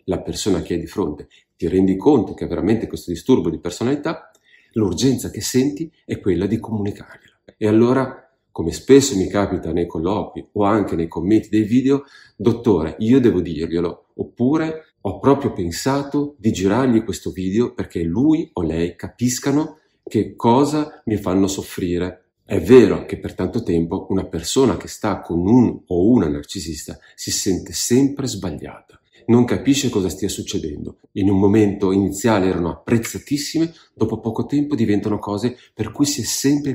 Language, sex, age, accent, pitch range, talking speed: Italian, male, 40-59, native, 90-125 Hz, 160 wpm